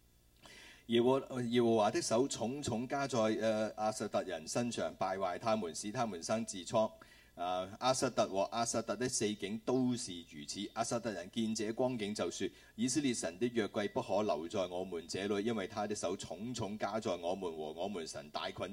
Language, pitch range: Chinese, 95-120 Hz